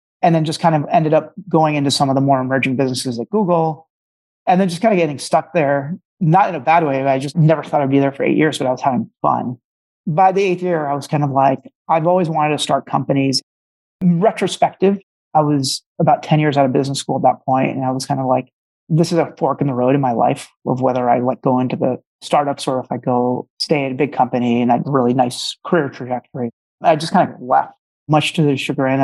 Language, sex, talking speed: English, male, 250 wpm